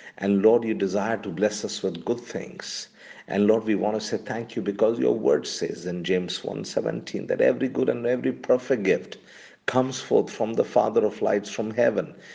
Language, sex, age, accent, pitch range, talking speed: English, male, 50-69, Indian, 95-120 Hz, 200 wpm